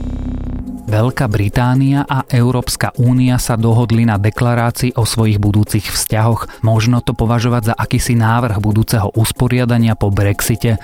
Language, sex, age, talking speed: Slovak, male, 30-49, 125 wpm